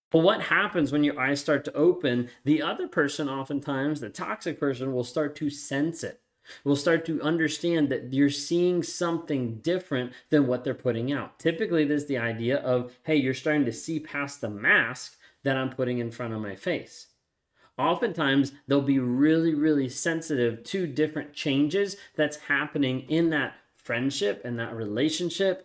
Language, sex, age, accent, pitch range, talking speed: English, male, 30-49, American, 125-155 Hz, 170 wpm